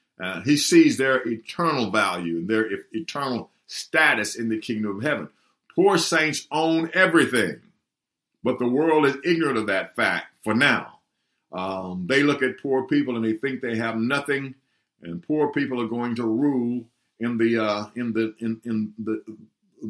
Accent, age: American, 50-69